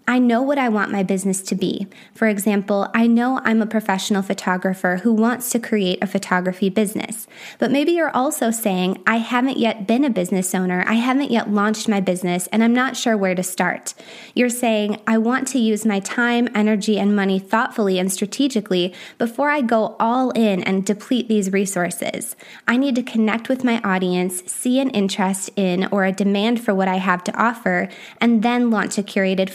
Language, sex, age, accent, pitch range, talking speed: English, female, 20-39, American, 195-240 Hz, 195 wpm